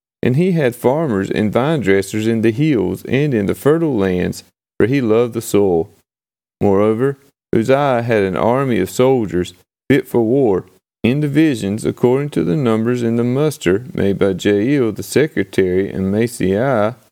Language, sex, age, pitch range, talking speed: English, male, 30-49, 100-135 Hz, 160 wpm